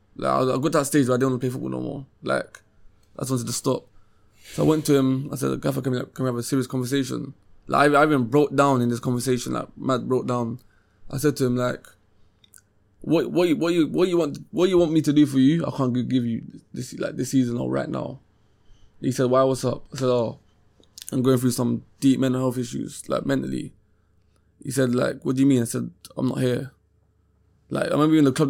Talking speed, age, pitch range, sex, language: 250 wpm, 20-39, 110-140 Hz, male, English